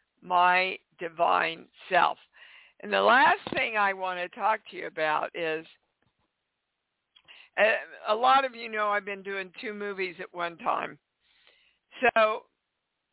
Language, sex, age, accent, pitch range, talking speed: English, female, 60-79, American, 190-245 Hz, 135 wpm